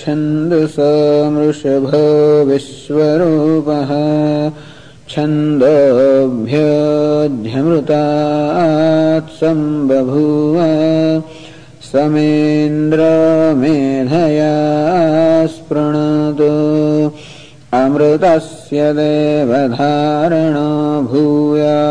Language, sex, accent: English, male, Indian